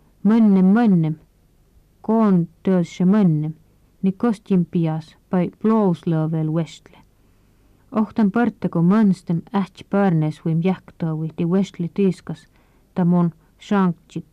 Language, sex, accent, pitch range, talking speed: Finnish, female, native, 160-205 Hz, 90 wpm